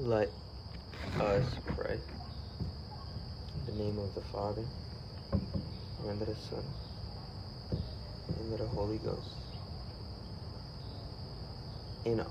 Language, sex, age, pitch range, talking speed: English, male, 30-49, 100-115 Hz, 95 wpm